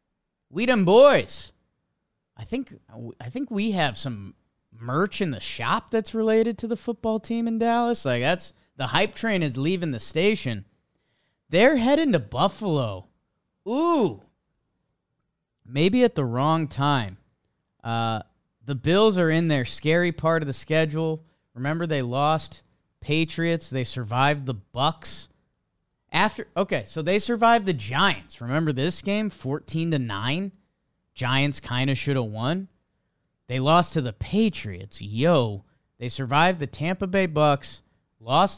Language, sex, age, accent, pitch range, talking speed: English, male, 20-39, American, 125-185 Hz, 140 wpm